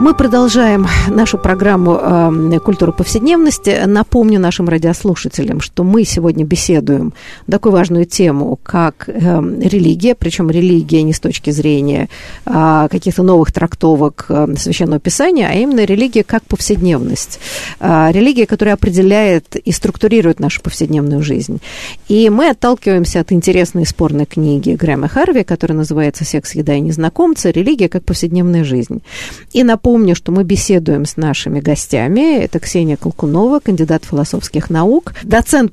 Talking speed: 140 wpm